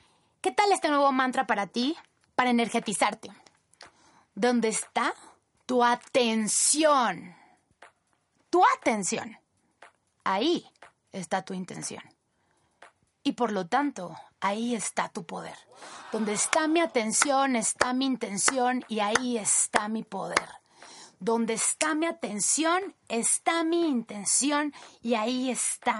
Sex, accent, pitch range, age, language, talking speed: female, Mexican, 225-290 Hz, 30-49, Spanish, 115 wpm